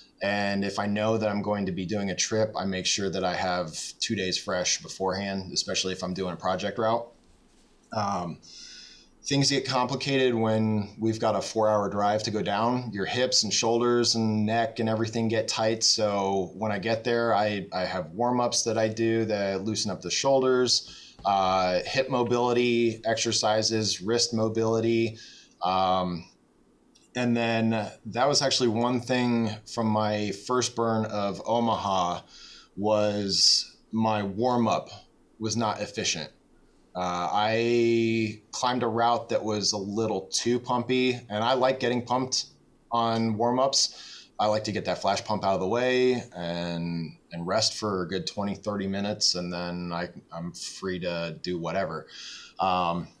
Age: 20-39